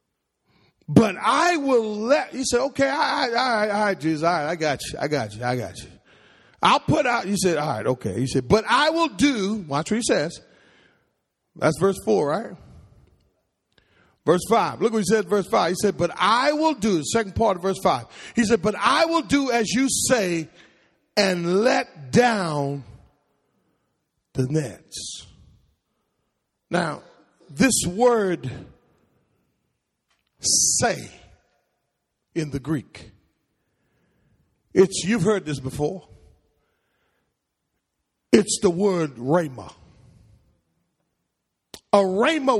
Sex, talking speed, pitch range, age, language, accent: male, 135 wpm, 150-230 Hz, 40-59, English, American